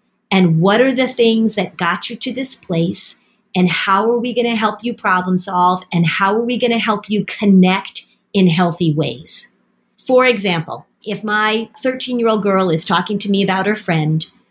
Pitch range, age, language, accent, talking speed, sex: 185-240 Hz, 40-59, English, American, 200 wpm, female